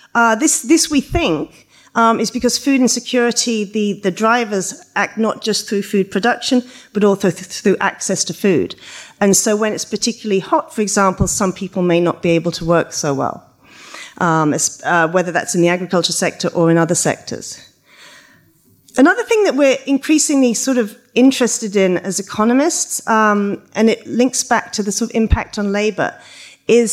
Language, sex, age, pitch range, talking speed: French, female, 40-59, 190-250 Hz, 175 wpm